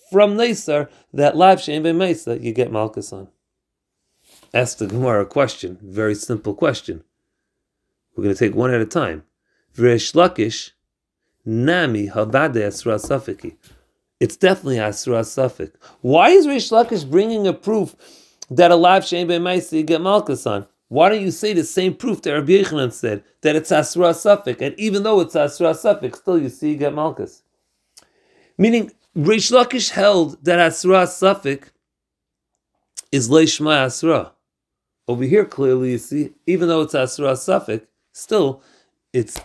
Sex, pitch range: male, 120-180 Hz